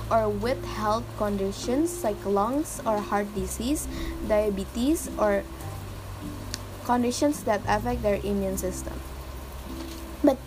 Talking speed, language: 95 wpm, English